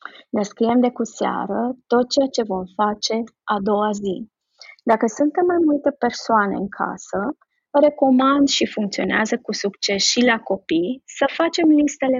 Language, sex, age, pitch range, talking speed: Romanian, female, 20-39, 210-260 Hz, 150 wpm